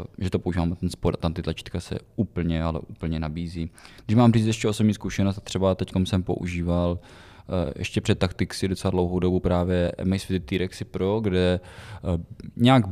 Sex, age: male, 20-39